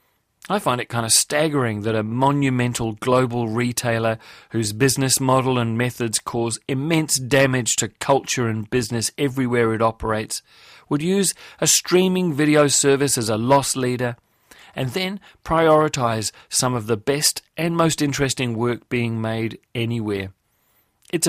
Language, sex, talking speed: English, male, 145 wpm